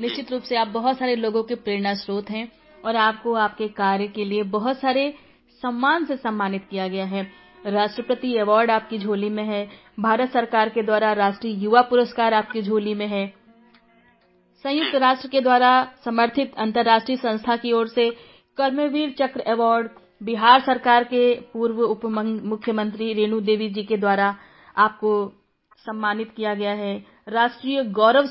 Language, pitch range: Hindi, 210-245 Hz